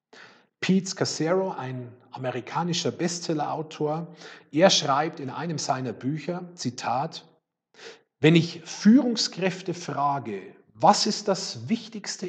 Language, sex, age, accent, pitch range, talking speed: German, male, 40-59, German, 130-170 Hz, 100 wpm